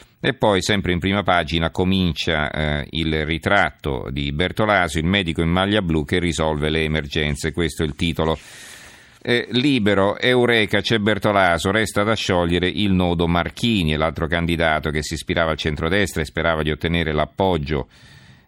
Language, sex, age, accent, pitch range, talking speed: Italian, male, 40-59, native, 80-95 Hz, 155 wpm